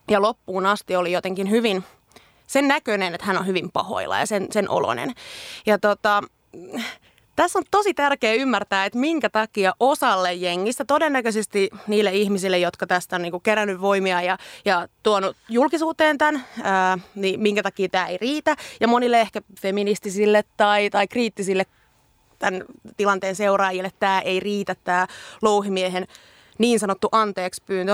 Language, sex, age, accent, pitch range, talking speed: Finnish, female, 30-49, native, 195-260 Hz, 150 wpm